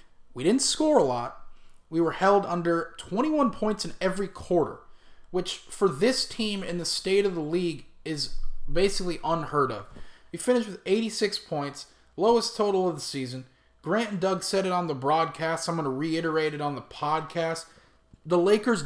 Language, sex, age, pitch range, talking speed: English, male, 30-49, 150-190 Hz, 180 wpm